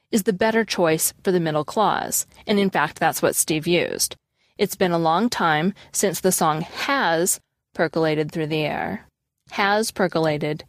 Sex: female